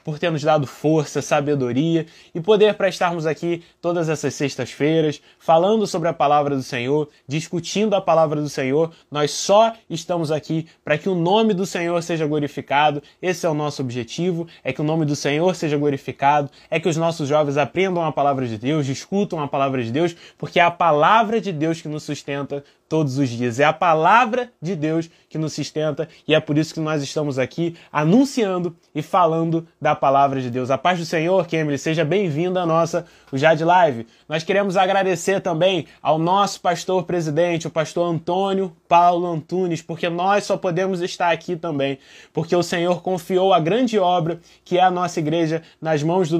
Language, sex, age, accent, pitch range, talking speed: Portuguese, male, 20-39, Brazilian, 150-180 Hz, 190 wpm